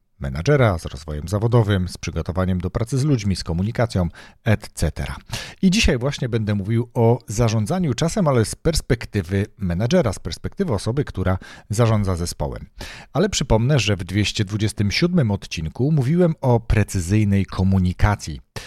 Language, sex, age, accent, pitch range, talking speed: Polish, male, 40-59, native, 95-120 Hz, 130 wpm